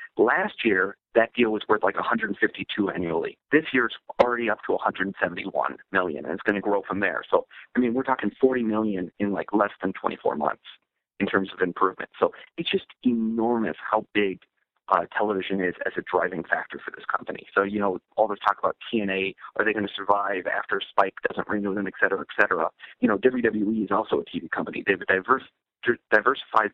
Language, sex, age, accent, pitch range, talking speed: English, male, 40-59, American, 100-120 Hz, 200 wpm